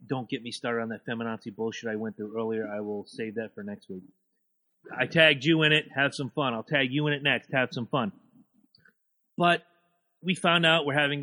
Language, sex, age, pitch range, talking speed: English, male, 30-49, 120-160 Hz, 225 wpm